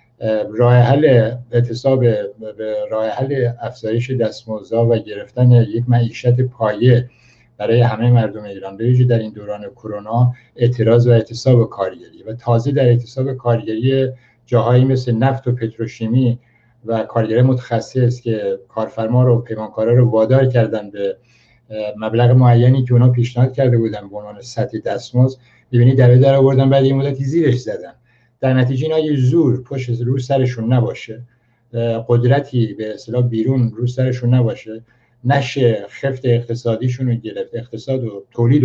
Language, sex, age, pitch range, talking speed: Persian, male, 60-79, 115-130 Hz, 135 wpm